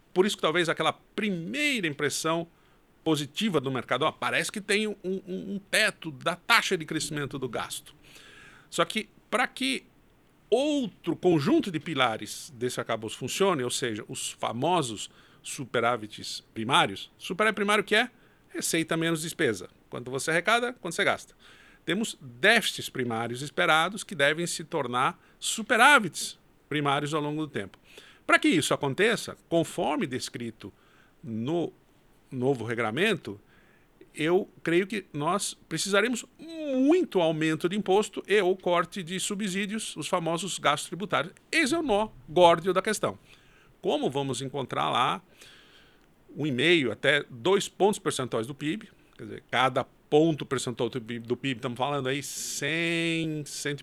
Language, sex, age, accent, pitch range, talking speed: Portuguese, male, 50-69, Brazilian, 135-200 Hz, 140 wpm